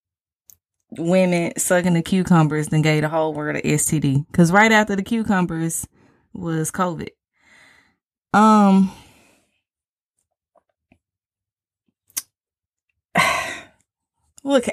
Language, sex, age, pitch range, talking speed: English, female, 20-39, 155-210 Hz, 80 wpm